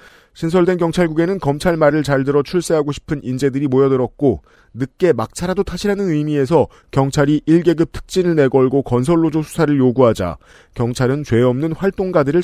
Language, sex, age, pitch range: Korean, male, 40-59, 125-160 Hz